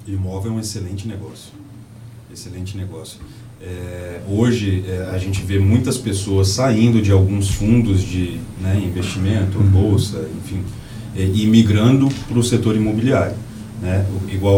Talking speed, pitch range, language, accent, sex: 120 wpm, 100-115 Hz, Portuguese, Brazilian, male